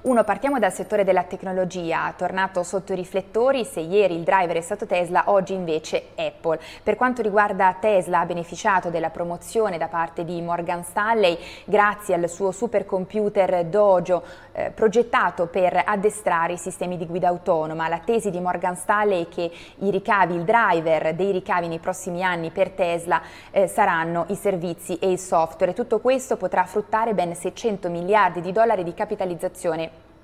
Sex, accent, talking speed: female, native, 165 wpm